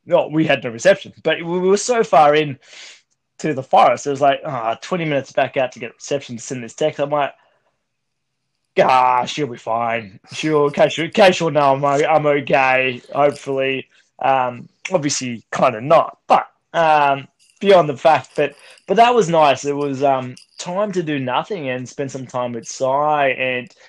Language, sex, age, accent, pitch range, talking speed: English, male, 20-39, Australian, 125-160 Hz, 195 wpm